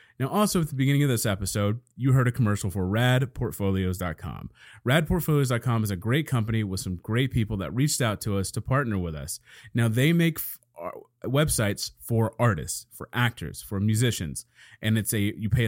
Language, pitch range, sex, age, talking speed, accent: English, 105-140 Hz, male, 30-49, 190 wpm, American